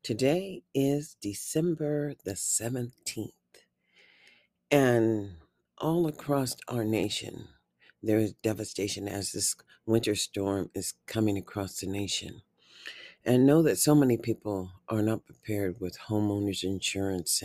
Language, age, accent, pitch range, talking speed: English, 50-69, American, 100-135 Hz, 115 wpm